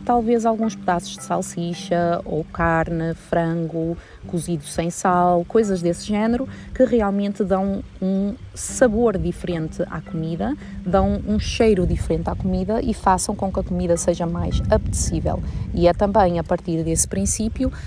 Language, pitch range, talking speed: Portuguese, 165-205 Hz, 150 wpm